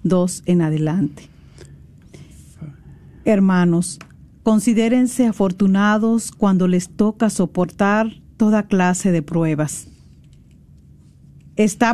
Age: 50-69